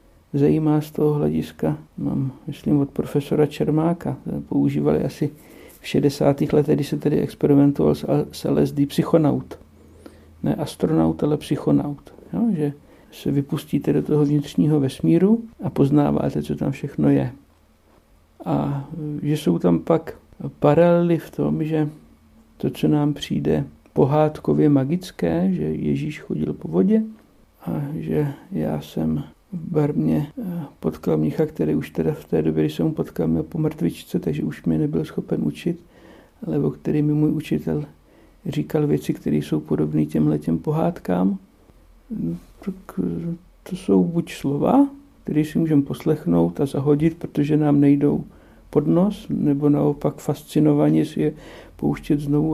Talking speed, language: 135 wpm, Czech